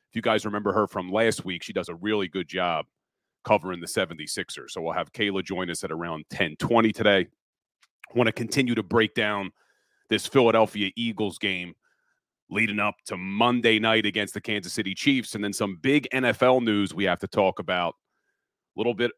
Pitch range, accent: 105-135 Hz, American